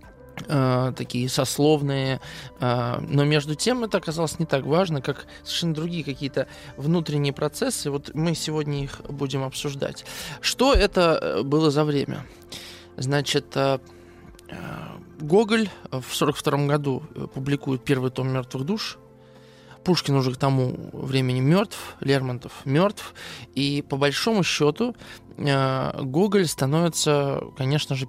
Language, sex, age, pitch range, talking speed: Russian, male, 20-39, 130-150 Hz, 115 wpm